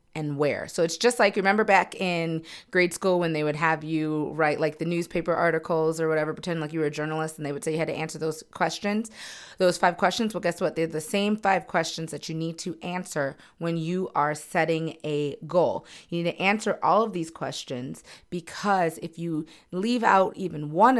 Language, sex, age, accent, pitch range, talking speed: English, female, 30-49, American, 155-190 Hz, 215 wpm